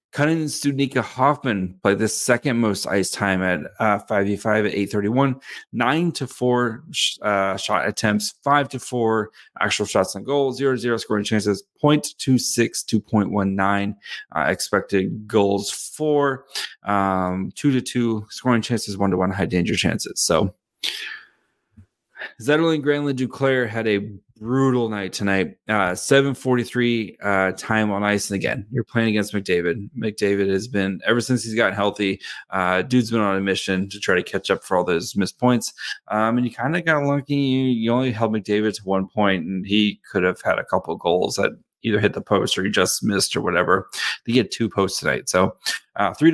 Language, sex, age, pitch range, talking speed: English, male, 30-49, 100-130 Hz, 180 wpm